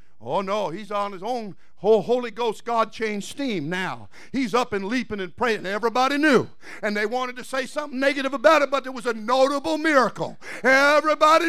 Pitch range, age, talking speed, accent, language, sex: 210-330 Hz, 50-69, 190 wpm, American, English, male